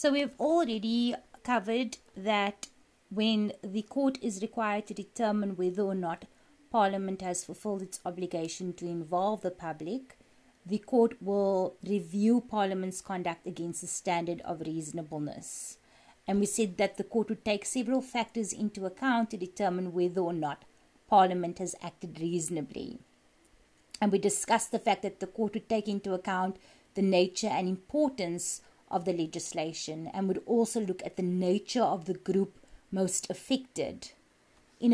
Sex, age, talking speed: female, 30-49, 150 wpm